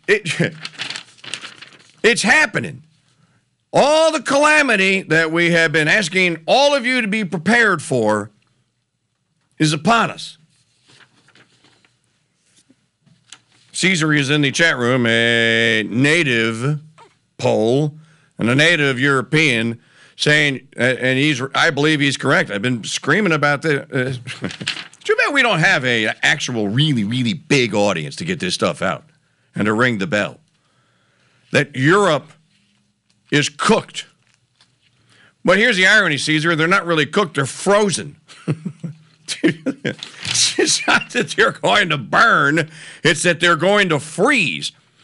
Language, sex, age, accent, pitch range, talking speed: English, male, 50-69, American, 140-215 Hz, 125 wpm